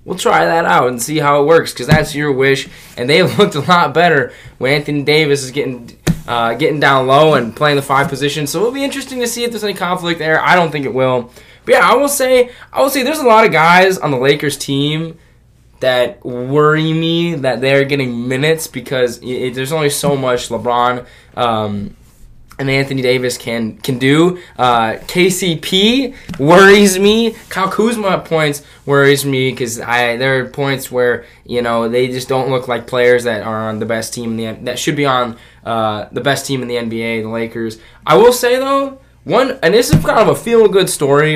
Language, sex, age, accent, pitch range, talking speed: English, male, 10-29, American, 125-165 Hz, 210 wpm